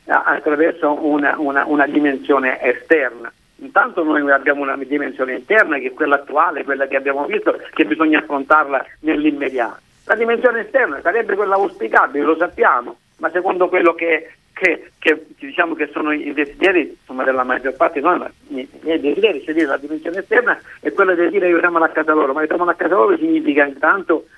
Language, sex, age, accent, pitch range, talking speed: Italian, male, 50-69, native, 145-185 Hz, 170 wpm